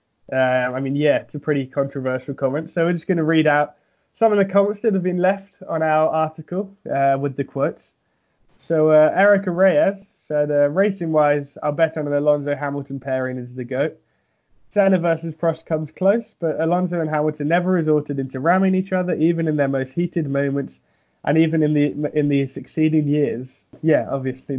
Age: 20-39